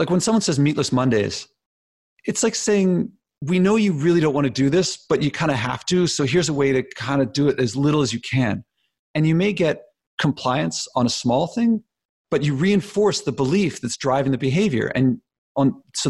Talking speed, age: 215 wpm, 40-59